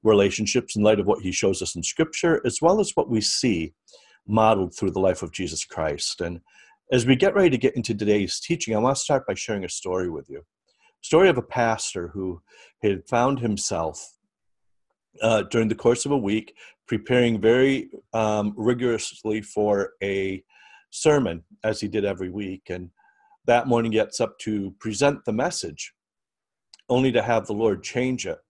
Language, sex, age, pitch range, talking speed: English, male, 40-59, 100-120 Hz, 180 wpm